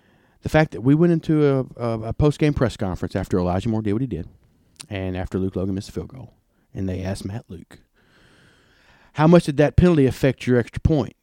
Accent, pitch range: American, 95-135 Hz